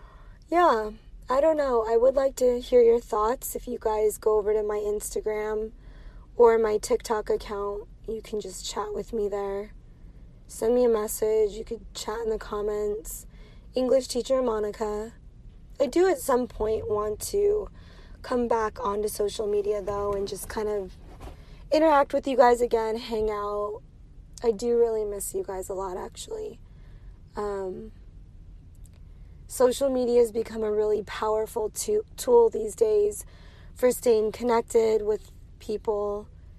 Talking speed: 150 wpm